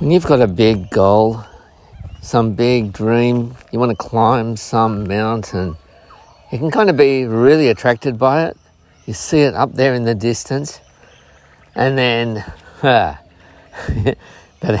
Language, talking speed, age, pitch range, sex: English, 140 wpm, 50-69, 95-120 Hz, male